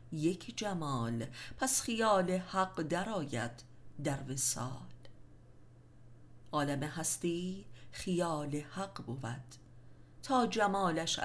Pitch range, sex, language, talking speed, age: 130-180 Hz, female, Persian, 80 wpm, 50-69